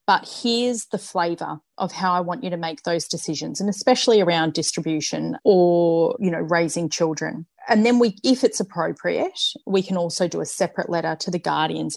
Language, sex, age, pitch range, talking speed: English, female, 30-49, 165-205 Hz, 185 wpm